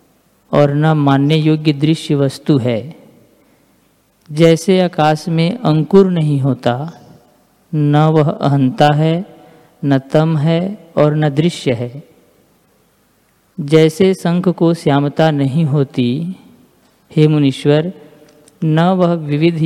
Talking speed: 105 wpm